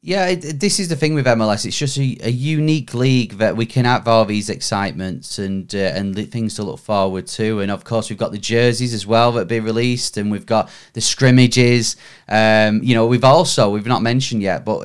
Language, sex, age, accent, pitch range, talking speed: English, male, 20-39, British, 105-125 Hz, 225 wpm